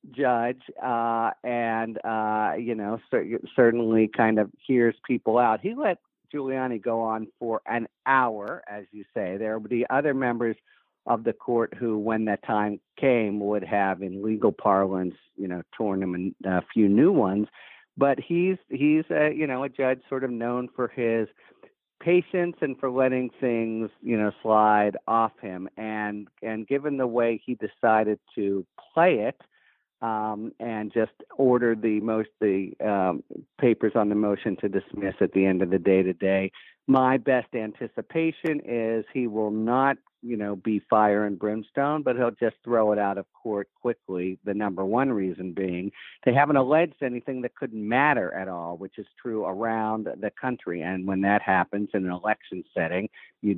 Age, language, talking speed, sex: 50-69, English, 175 wpm, male